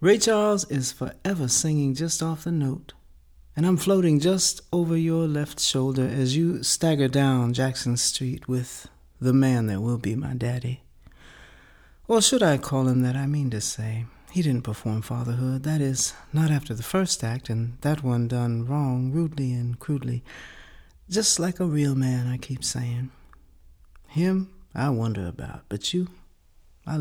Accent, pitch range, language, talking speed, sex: American, 120-155 Hz, English, 165 wpm, male